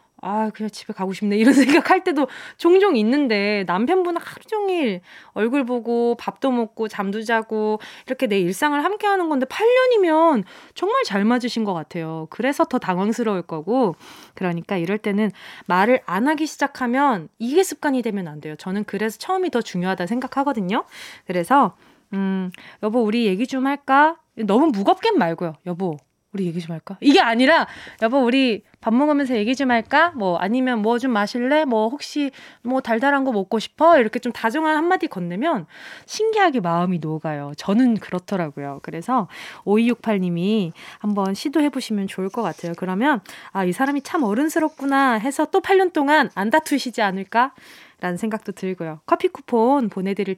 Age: 20-39